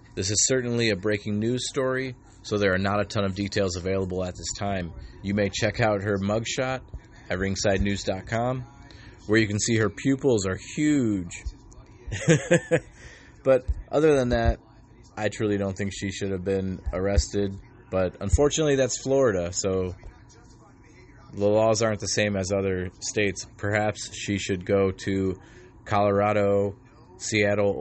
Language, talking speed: English, 145 wpm